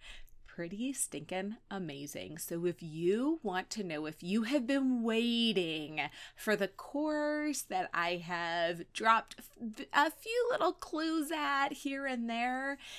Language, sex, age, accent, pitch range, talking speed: English, female, 30-49, American, 170-250 Hz, 135 wpm